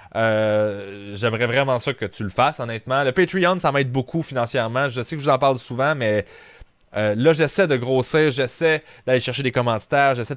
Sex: male